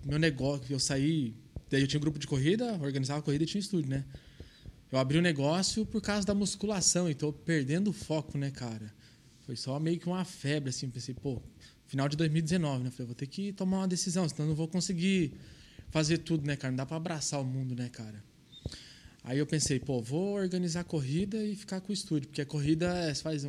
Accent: Brazilian